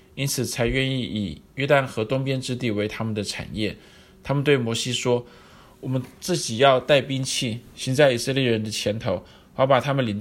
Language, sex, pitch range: Chinese, male, 110-130 Hz